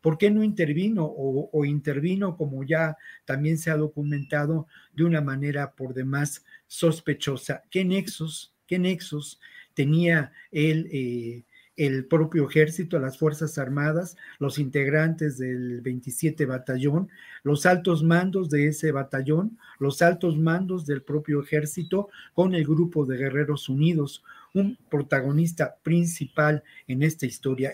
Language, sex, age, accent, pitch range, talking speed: Spanish, male, 50-69, Mexican, 145-175 Hz, 130 wpm